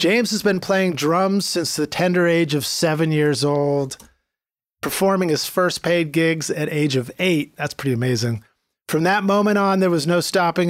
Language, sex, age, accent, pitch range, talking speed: English, male, 40-59, American, 135-170 Hz, 185 wpm